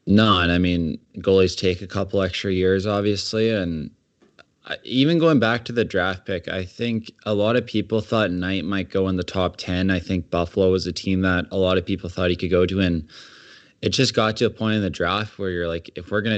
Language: English